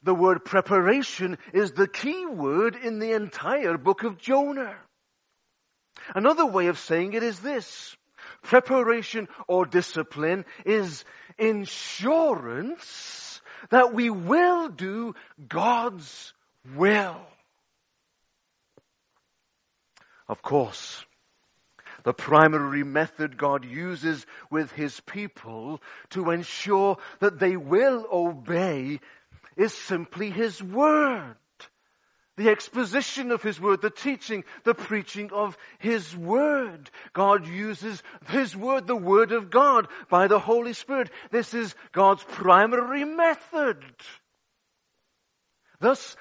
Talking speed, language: 105 wpm, English